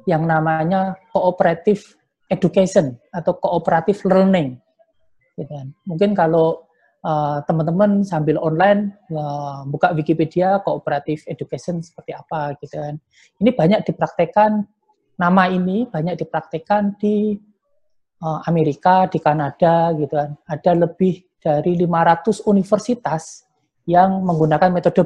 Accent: native